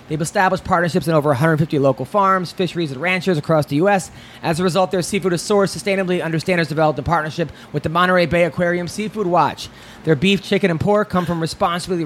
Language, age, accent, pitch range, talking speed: English, 30-49, American, 160-200 Hz, 205 wpm